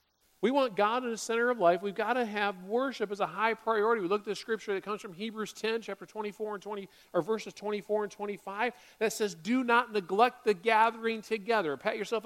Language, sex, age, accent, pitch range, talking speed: English, male, 40-59, American, 185-250 Hz, 225 wpm